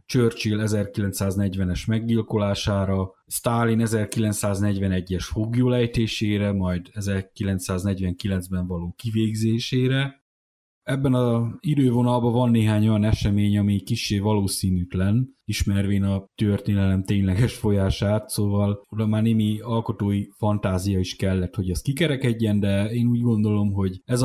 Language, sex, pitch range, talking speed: Hungarian, male, 95-115 Hz, 105 wpm